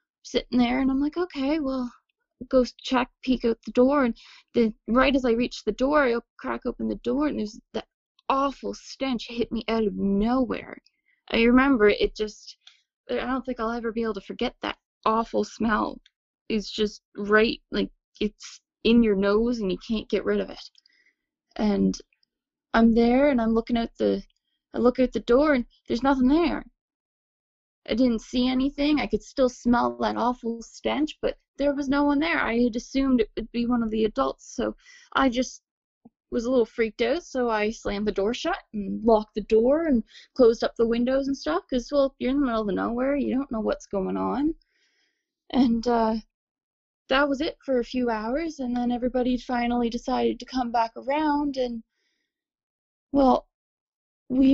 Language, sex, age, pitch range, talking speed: English, female, 10-29, 225-275 Hz, 190 wpm